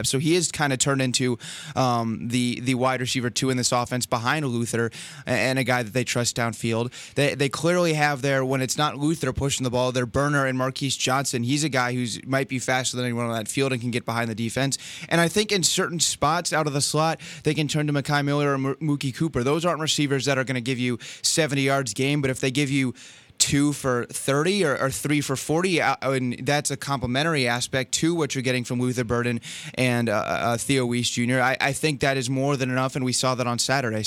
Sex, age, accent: male, 20-39, American